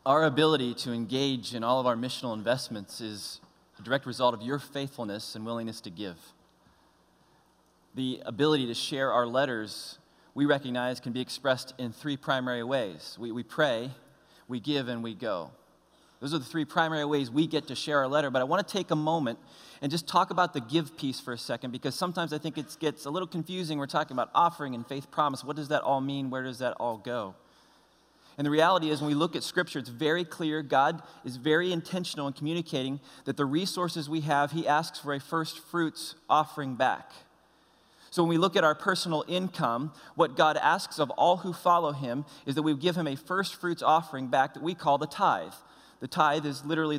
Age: 20-39